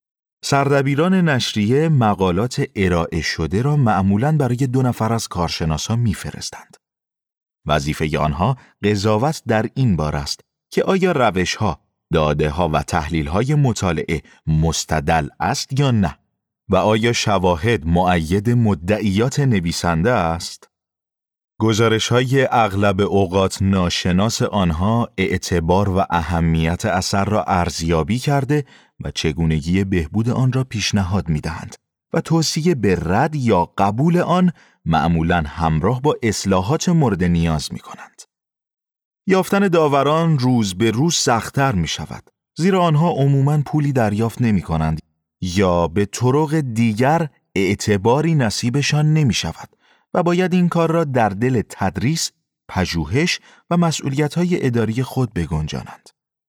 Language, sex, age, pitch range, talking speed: Persian, male, 30-49, 90-140 Hz, 120 wpm